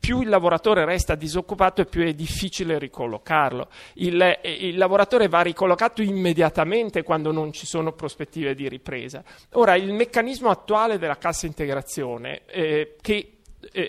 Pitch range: 160-215 Hz